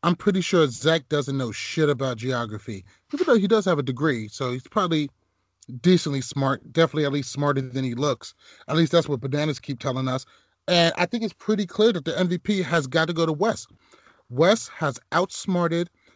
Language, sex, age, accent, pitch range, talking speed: English, male, 30-49, American, 130-170 Hz, 195 wpm